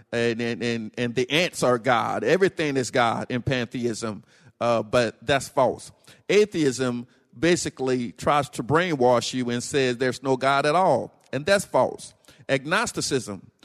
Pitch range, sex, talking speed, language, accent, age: 120-145 Hz, male, 150 wpm, English, American, 50-69